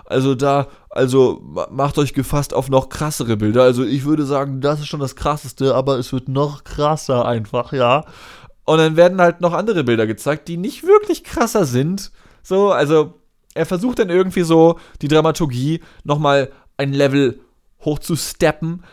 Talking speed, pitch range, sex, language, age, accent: 165 wpm, 130-170 Hz, male, German, 20-39, German